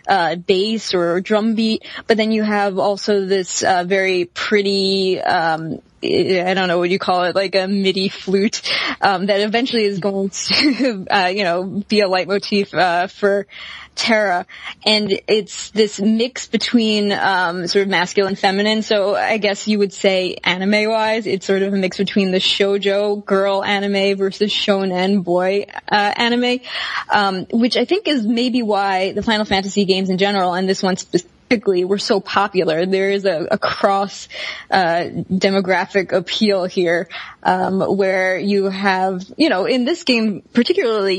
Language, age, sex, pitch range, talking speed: English, 20-39, female, 190-215 Hz, 160 wpm